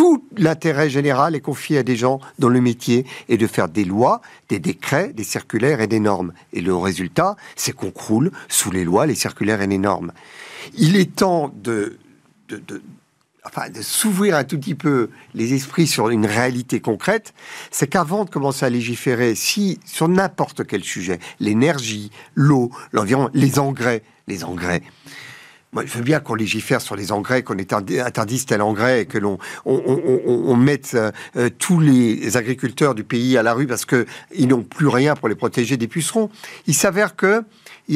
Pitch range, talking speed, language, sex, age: 120-175 Hz, 175 wpm, French, male, 50-69